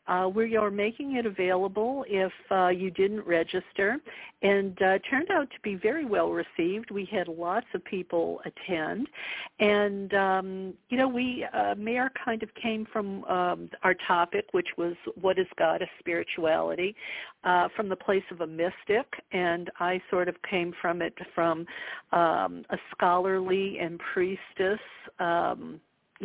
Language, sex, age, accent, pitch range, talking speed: English, female, 50-69, American, 170-210 Hz, 155 wpm